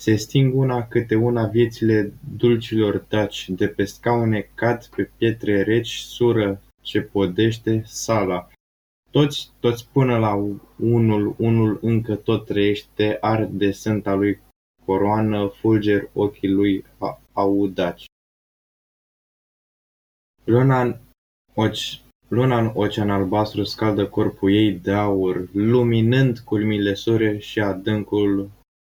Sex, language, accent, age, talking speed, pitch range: male, Romanian, native, 20-39, 105 wpm, 100-115 Hz